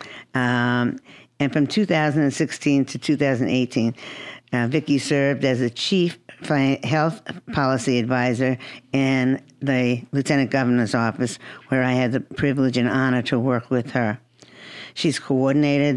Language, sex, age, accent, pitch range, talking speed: English, female, 50-69, American, 125-145 Hz, 125 wpm